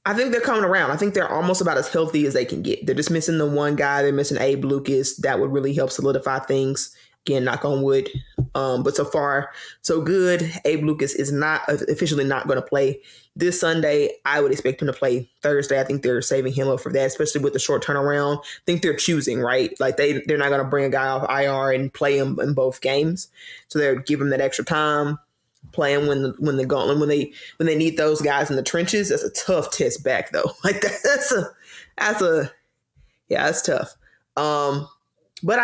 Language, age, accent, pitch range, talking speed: English, 20-39, American, 135-165 Hz, 225 wpm